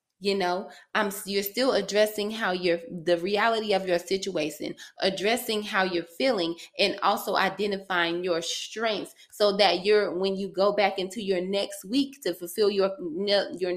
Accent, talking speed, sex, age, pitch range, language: American, 160 wpm, female, 20-39, 180-205 Hz, English